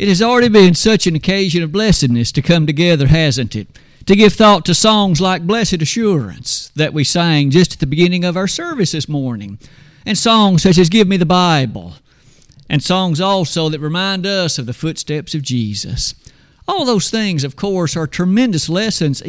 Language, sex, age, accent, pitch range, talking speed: English, male, 50-69, American, 145-195 Hz, 190 wpm